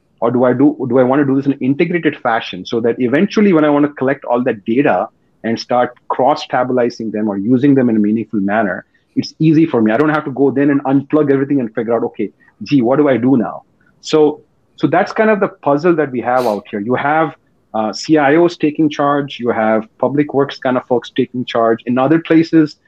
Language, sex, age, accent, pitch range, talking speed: English, male, 40-59, Indian, 115-145 Hz, 235 wpm